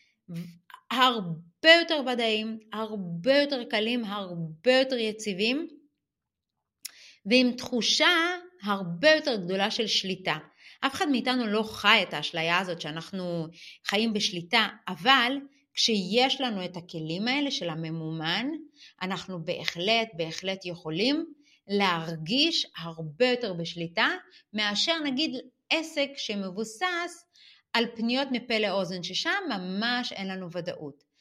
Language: Hebrew